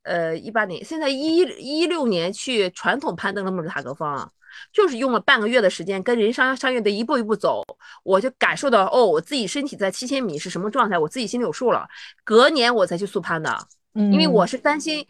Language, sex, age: Chinese, female, 20-39